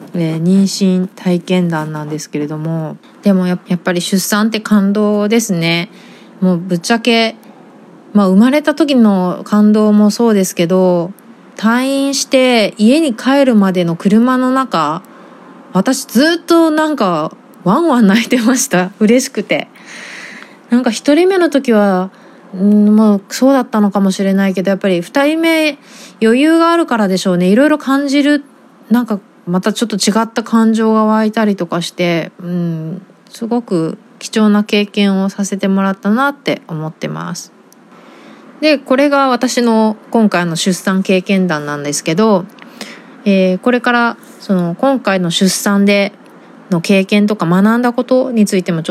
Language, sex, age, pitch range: Japanese, female, 20-39, 185-255 Hz